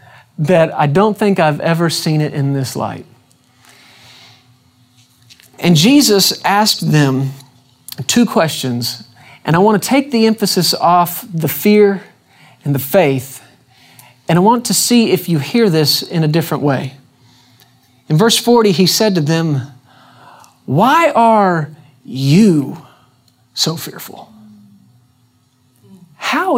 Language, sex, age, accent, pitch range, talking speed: English, male, 40-59, American, 130-200 Hz, 125 wpm